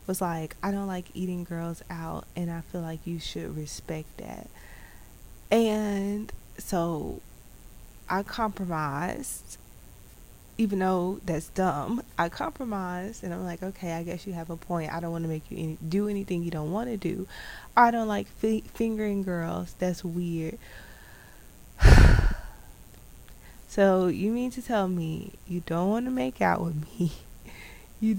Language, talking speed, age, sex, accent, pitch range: English, 150 wpm, 20-39, female, American, 165-210 Hz